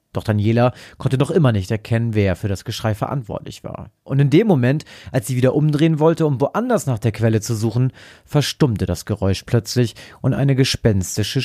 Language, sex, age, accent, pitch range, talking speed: German, male, 40-59, German, 105-140 Hz, 190 wpm